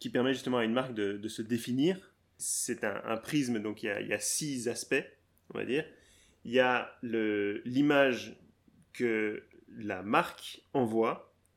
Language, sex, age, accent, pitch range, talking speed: French, male, 20-39, French, 105-125 Hz, 180 wpm